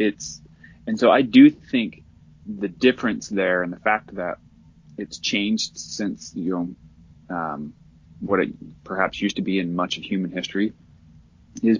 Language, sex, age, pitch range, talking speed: English, male, 20-39, 80-95 Hz, 160 wpm